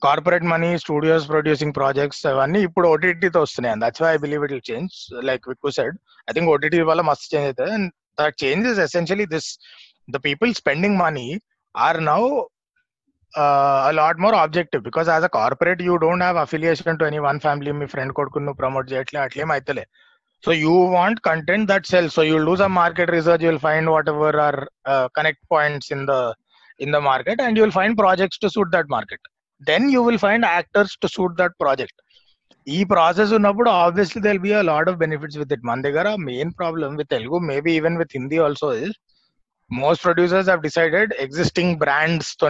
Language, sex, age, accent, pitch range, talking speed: Telugu, male, 30-49, native, 145-180 Hz, 200 wpm